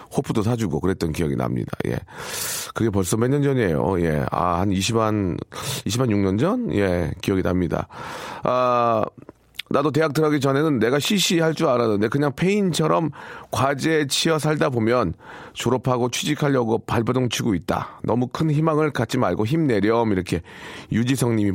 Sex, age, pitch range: male, 40-59, 110-155 Hz